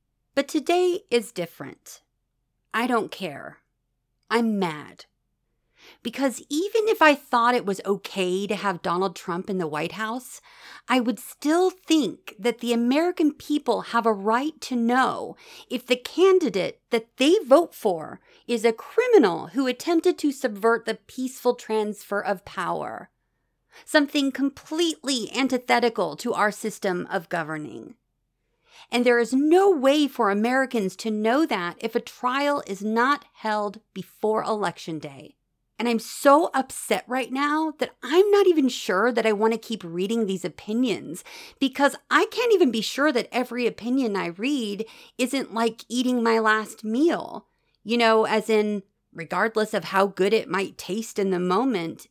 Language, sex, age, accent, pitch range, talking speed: English, female, 40-59, American, 205-275 Hz, 155 wpm